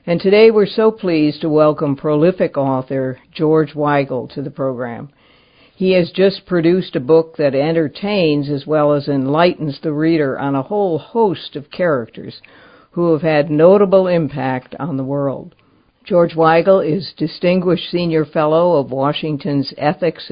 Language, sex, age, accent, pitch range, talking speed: English, female, 60-79, American, 140-175 Hz, 150 wpm